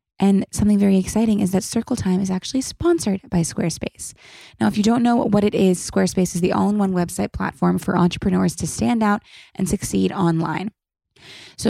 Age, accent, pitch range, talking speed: 20-39, American, 170-205 Hz, 185 wpm